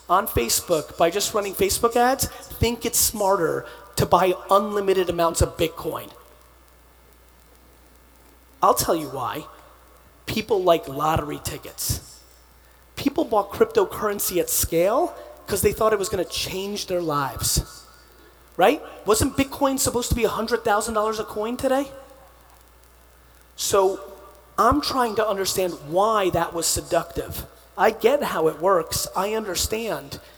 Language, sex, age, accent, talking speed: English, male, 30-49, American, 125 wpm